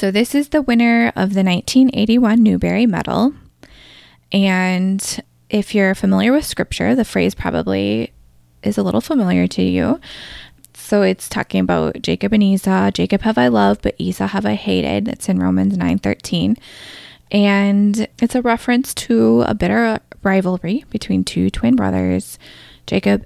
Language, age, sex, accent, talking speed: English, 20-39, female, American, 150 wpm